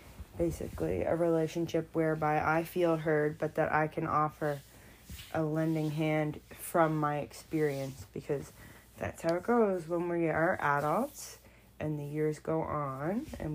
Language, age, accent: English, 20-39, American